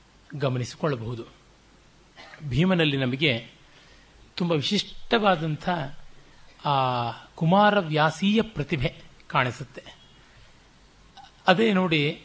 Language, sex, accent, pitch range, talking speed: Kannada, male, native, 145-185 Hz, 55 wpm